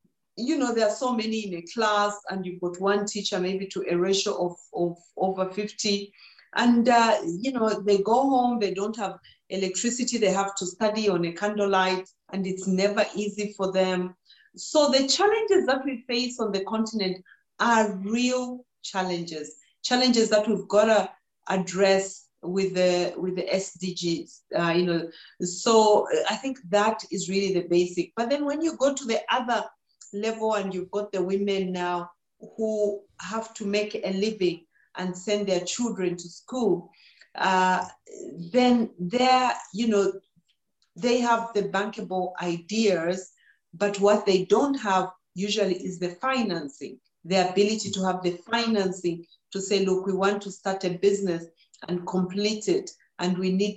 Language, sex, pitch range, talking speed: English, female, 180-220 Hz, 165 wpm